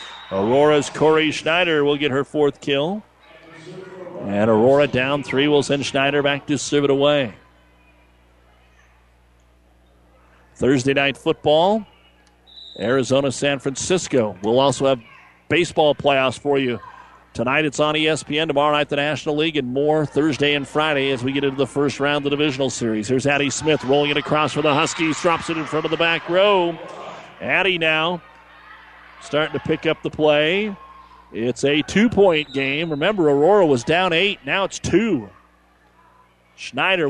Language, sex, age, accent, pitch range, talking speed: English, male, 50-69, American, 135-170 Hz, 155 wpm